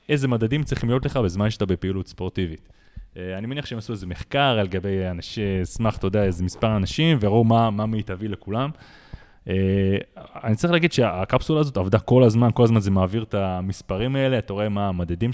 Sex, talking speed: male, 200 wpm